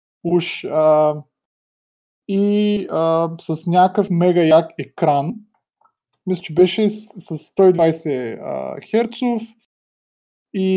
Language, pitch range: Bulgarian, 135-180 Hz